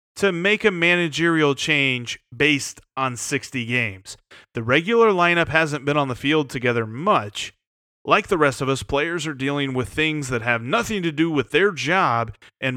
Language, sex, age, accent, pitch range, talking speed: English, male, 30-49, American, 120-155 Hz, 180 wpm